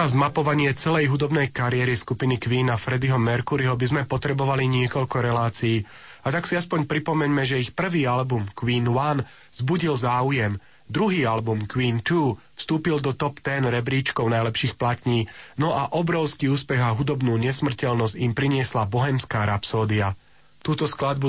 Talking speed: 145 wpm